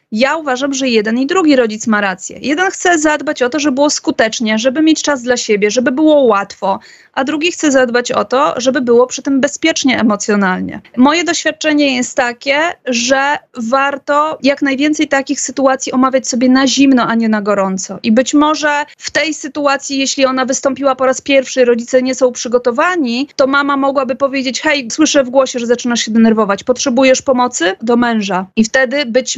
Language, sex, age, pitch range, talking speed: Polish, female, 30-49, 245-285 Hz, 185 wpm